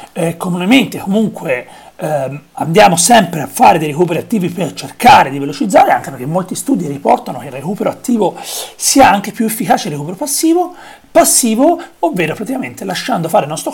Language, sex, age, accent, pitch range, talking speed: Italian, male, 40-59, native, 180-255 Hz, 165 wpm